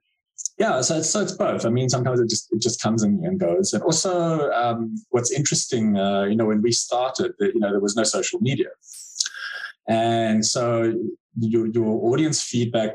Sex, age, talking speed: male, 20-39, 190 wpm